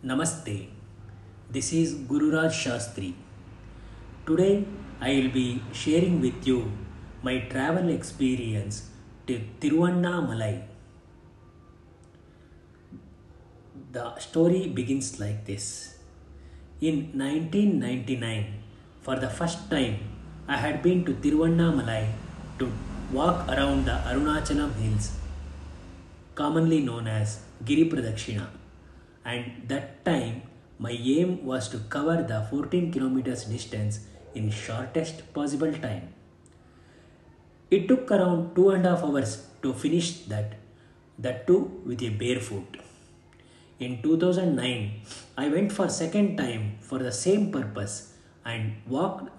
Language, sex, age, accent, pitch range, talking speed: Kannada, male, 30-49, native, 105-150 Hz, 105 wpm